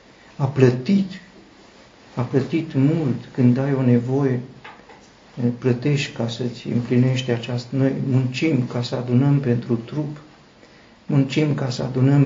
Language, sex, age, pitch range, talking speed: Romanian, male, 50-69, 120-135 Hz, 120 wpm